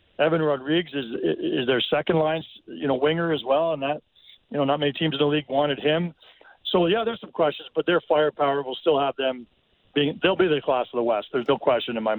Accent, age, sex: American, 50-69, male